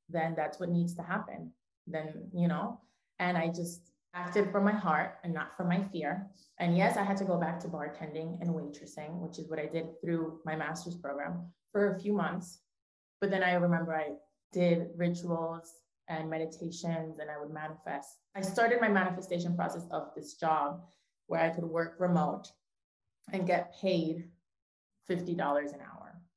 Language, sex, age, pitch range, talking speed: English, female, 20-39, 165-190 Hz, 175 wpm